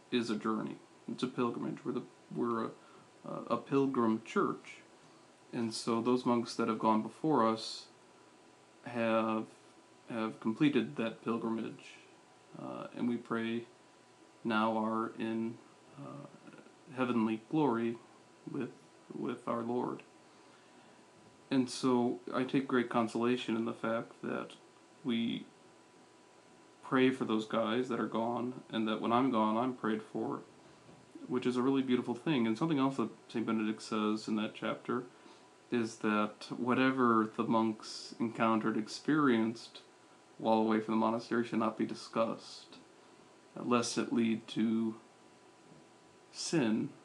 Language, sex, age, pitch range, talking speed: English, male, 40-59, 110-120 Hz, 135 wpm